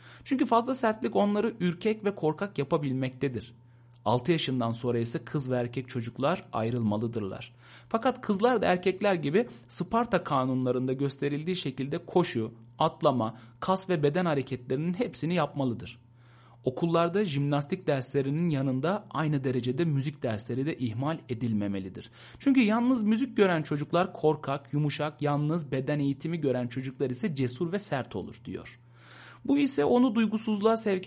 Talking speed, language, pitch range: 130 wpm, Turkish, 125-185 Hz